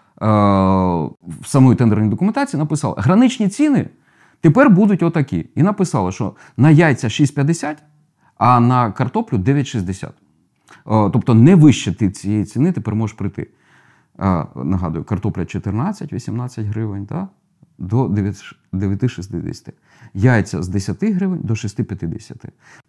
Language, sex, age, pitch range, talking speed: Ukrainian, male, 30-49, 105-165 Hz, 110 wpm